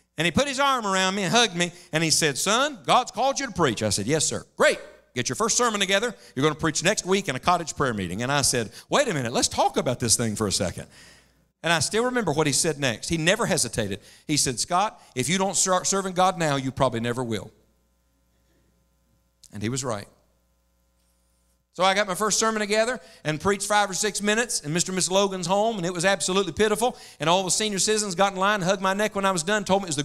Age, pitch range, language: 50-69, 150-235 Hz, English